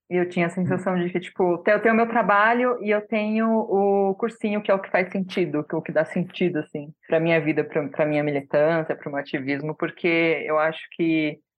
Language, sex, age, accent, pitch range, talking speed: Portuguese, female, 20-39, Brazilian, 150-175 Hz, 225 wpm